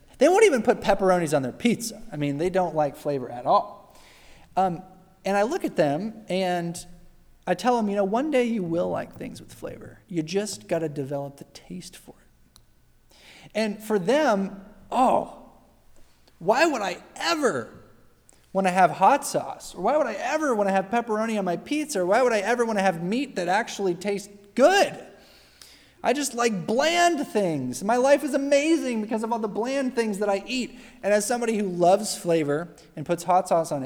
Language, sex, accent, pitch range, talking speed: English, male, American, 165-225 Hz, 200 wpm